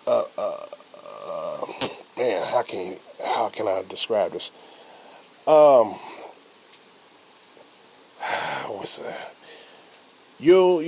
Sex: male